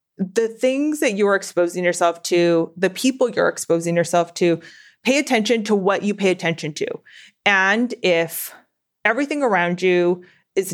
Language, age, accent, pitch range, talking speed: English, 20-39, American, 175-210 Hz, 155 wpm